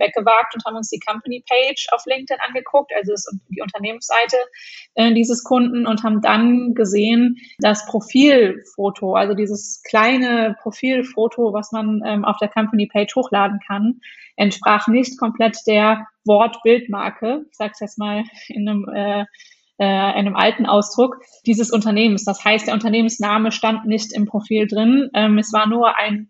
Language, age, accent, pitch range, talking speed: German, 20-39, German, 210-235 Hz, 155 wpm